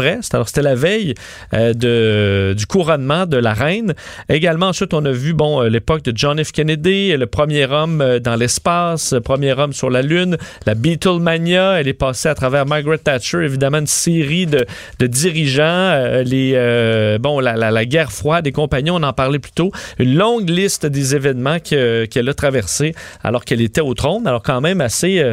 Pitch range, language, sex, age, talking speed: 125-165 Hz, French, male, 40-59, 195 wpm